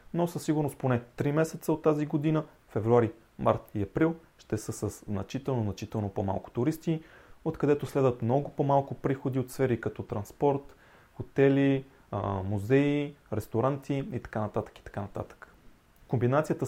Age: 30-49